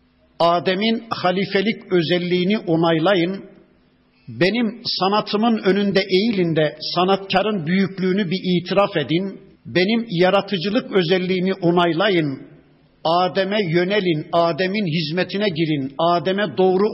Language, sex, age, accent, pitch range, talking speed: Turkish, male, 60-79, native, 170-210 Hz, 90 wpm